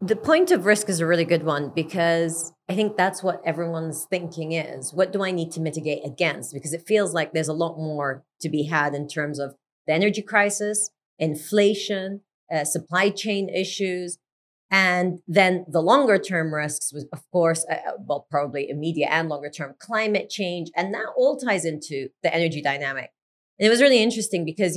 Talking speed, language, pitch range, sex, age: 180 wpm, English, 150-190 Hz, female, 30-49